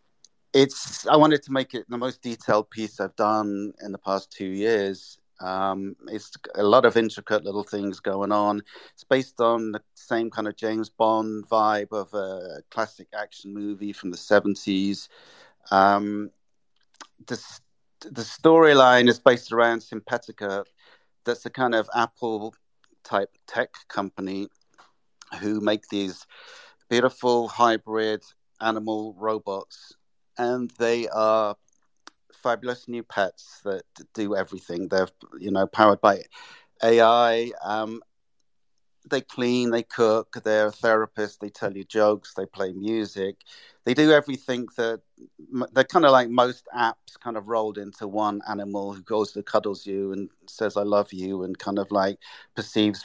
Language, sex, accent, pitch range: English, male, British, 100-115 Hz